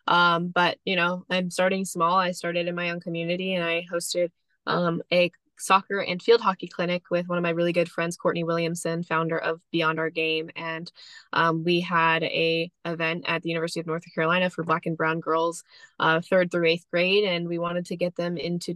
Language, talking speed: English, 210 wpm